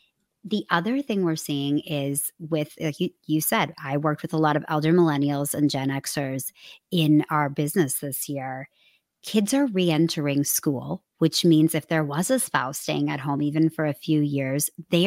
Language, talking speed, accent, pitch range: English, 185 wpm, American, 150-180 Hz